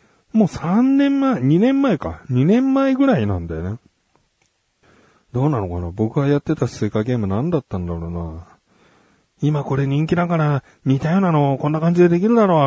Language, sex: Japanese, male